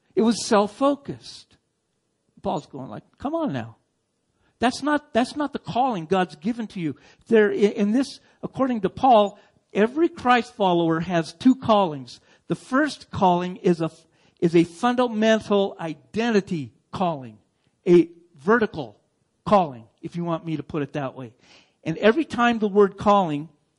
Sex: male